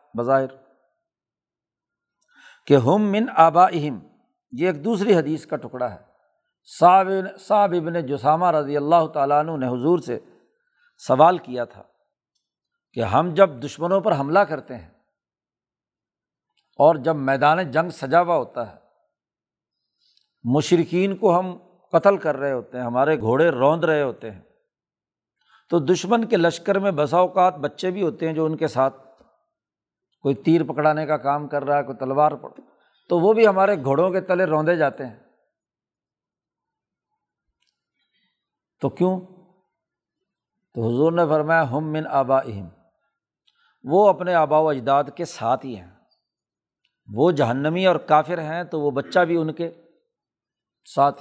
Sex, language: male, Urdu